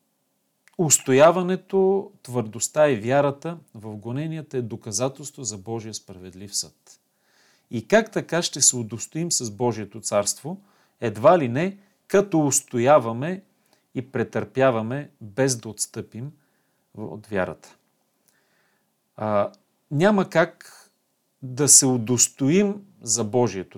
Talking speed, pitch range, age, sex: 105 wpm, 115-155 Hz, 40-59, male